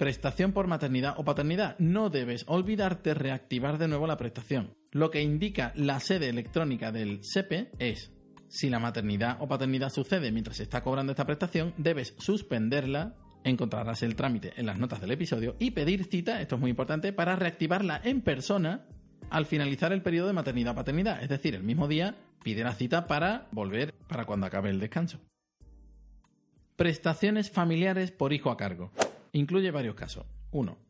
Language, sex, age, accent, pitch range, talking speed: Spanish, male, 40-59, Spanish, 120-170 Hz, 170 wpm